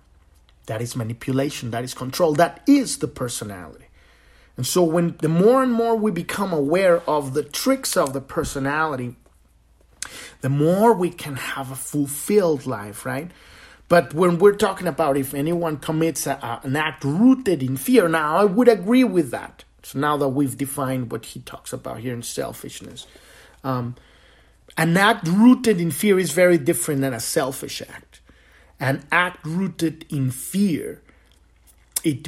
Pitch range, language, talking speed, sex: 130-180 Hz, English, 160 wpm, male